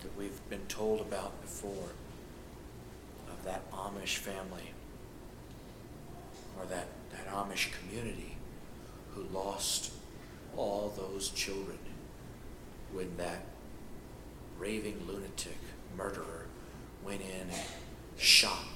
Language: English